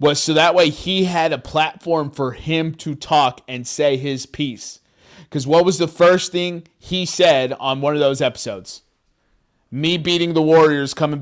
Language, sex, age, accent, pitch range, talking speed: English, male, 30-49, American, 135-170 Hz, 180 wpm